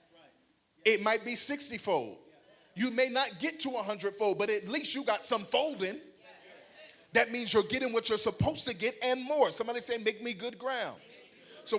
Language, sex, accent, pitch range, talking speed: English, male, American, 195-250 Hz, 190 wpm